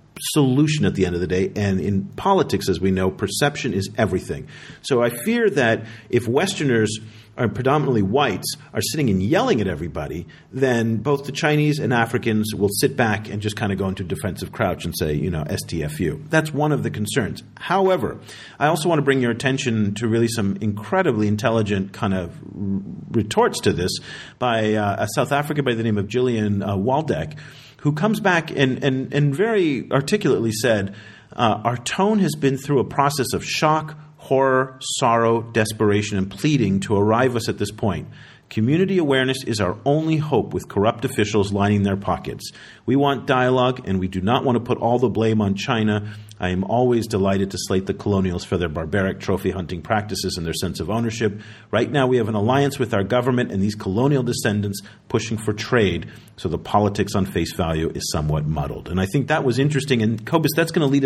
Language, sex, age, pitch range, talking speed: English, male, 40-59, 100-135 Hz, 195 wpm